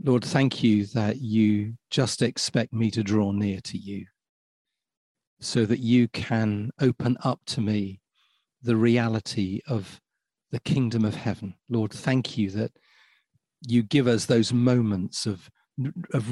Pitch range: 105-125 Hz